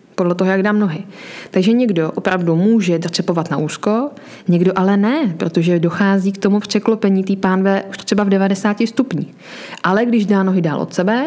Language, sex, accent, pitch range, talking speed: Czech, female, native, 180-210 Hz, 180 wpm